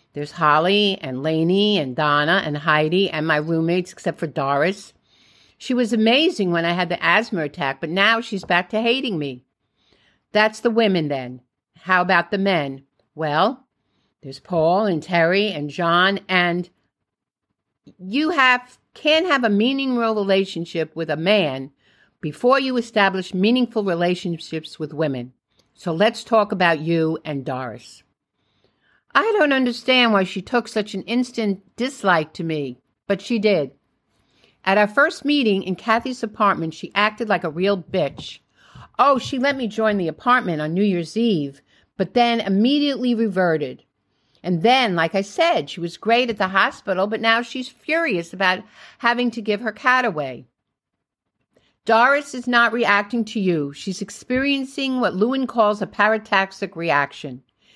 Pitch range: 165-230 Hz